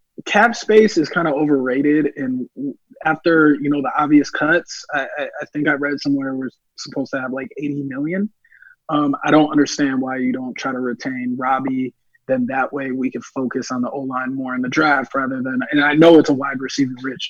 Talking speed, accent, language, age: 210 wpm, American, English, 20-39